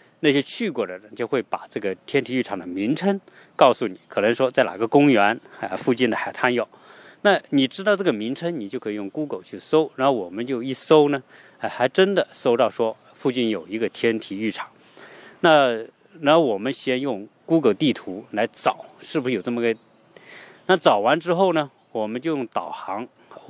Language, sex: Chinese, male